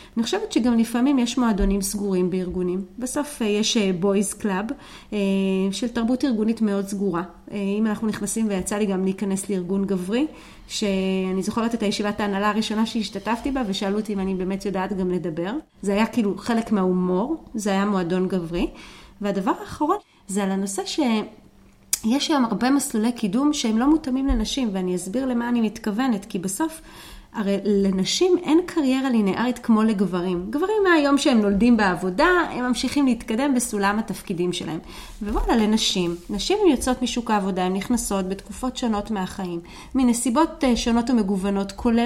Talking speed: 150 wpm